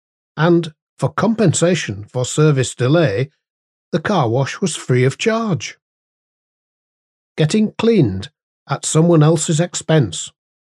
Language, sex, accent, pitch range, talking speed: English, male, British, 115-155 Hz, 105 wpm